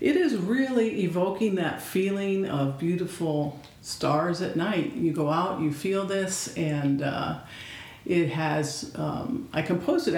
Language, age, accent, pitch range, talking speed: English, 50-69, American, 150-190 Hz, 145 wpm